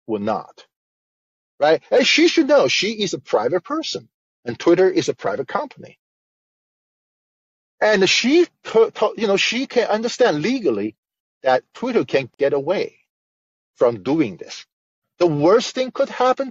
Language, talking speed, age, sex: English, 150 wpm, 40-59, male